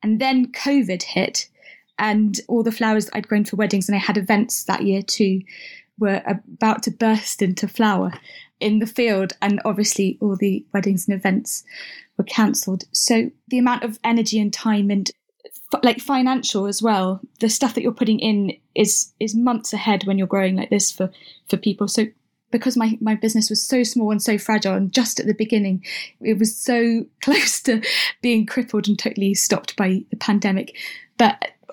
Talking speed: 185 wpm